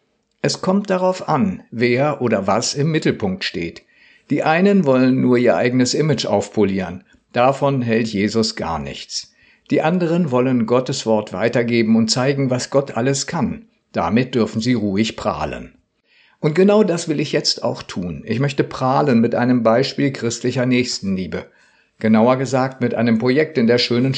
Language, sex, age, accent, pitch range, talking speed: German, male, 50-69, German, 115-145 Hz, 160 wpm